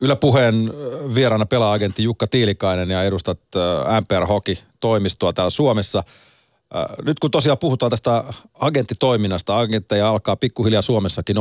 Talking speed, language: 115 wpm, Finnish